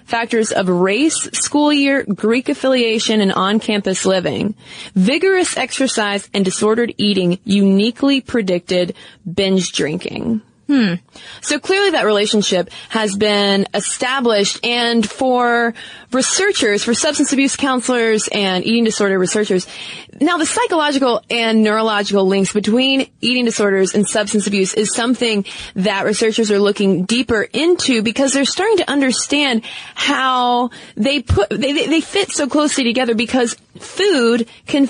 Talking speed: 130 wpm